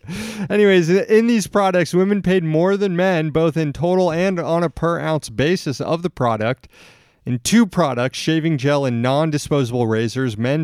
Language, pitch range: English, 115-160 Hz